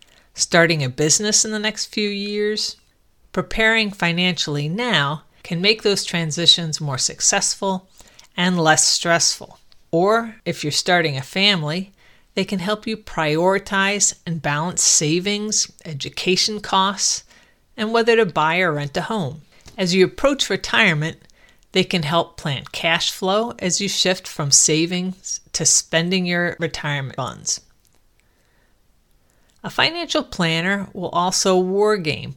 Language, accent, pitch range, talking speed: English, American, 155-200 Hz, 130 wpm